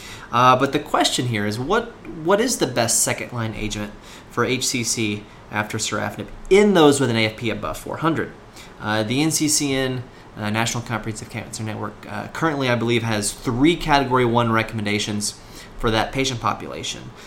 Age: 30-49